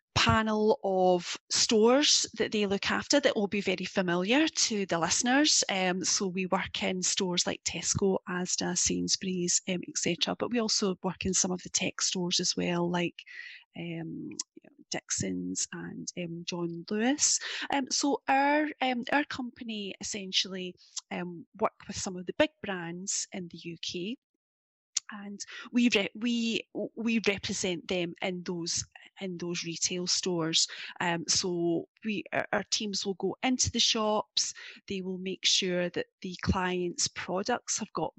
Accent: British